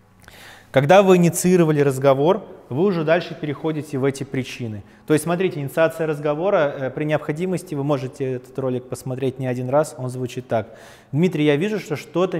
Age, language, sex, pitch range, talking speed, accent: 20-39, Russian, male, 120-155 Hz, 165 wpm, native